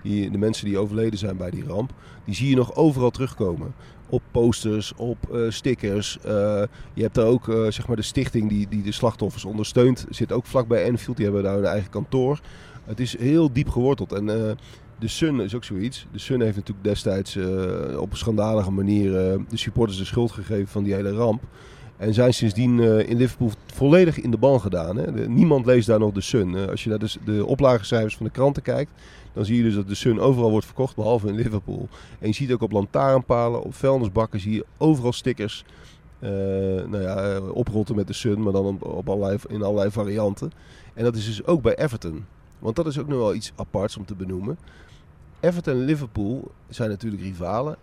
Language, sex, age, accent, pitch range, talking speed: Dutch, male, 40-59, Dutch, 100-125 Hz, 215 wpm